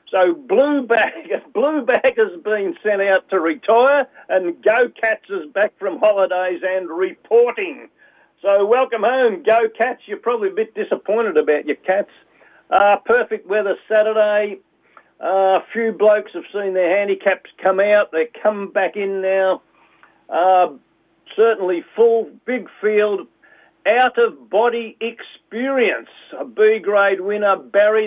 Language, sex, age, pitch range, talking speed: English, male, 50-69, 185-240 Hz, 130 wpm